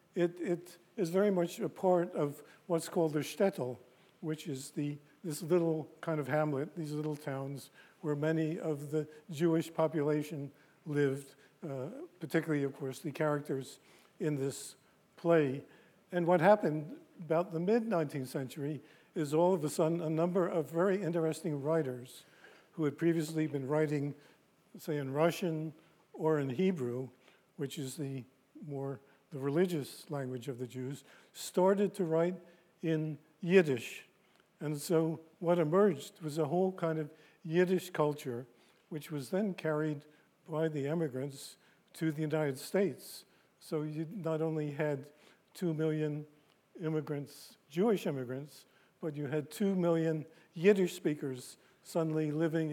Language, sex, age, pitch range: English, male, 50-69, 145-170 Hz